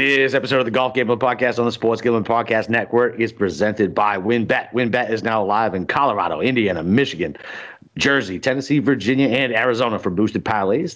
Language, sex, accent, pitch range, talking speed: English, male, American, 100-130 Hz, 180 wpm